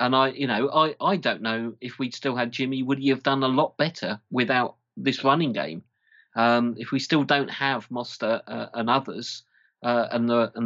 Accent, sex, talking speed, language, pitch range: British, male, 215 wpm, English, 115-135 Hz